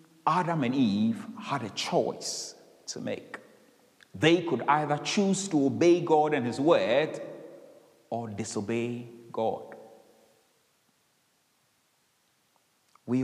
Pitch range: 135-190 Hz